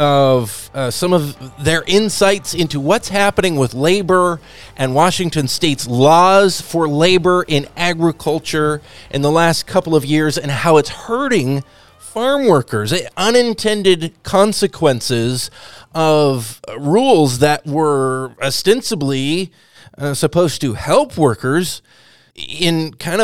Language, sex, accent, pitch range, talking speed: English, male, American, 130-185 Hz, 115 wpm